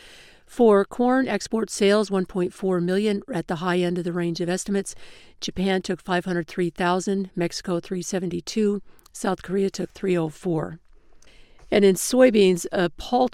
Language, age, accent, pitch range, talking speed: English, 50-69, American, 170-195 Hz, 130 wpm